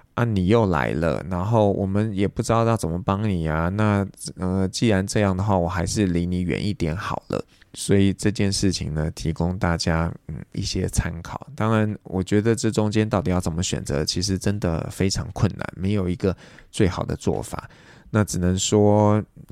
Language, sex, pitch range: Chinese, male, 90-110 Hz